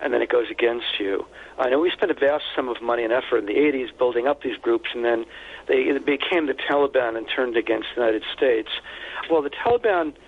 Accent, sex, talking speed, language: American, male, 230 wpm, English